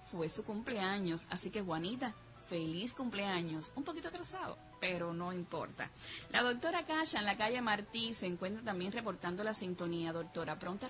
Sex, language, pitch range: female, Spanish, 170-220 Hz